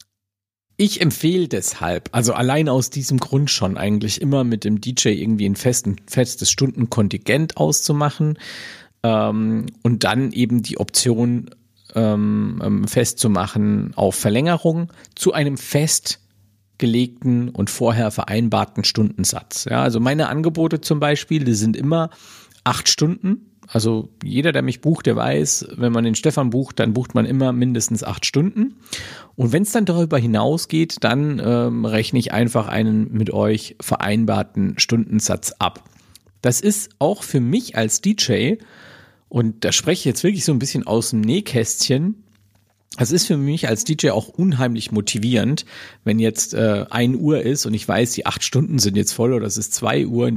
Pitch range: 110-145 Hz